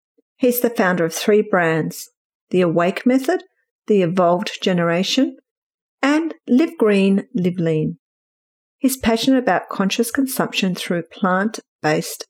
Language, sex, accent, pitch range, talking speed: English, female, Australian, 185-255 Hz, 115 wpm